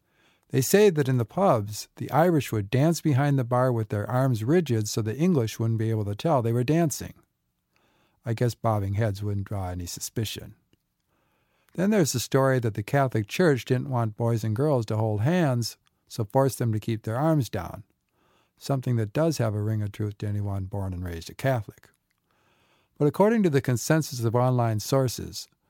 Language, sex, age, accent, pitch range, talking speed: English, male, 50-69, American, 105-140 Hz, 195 wpm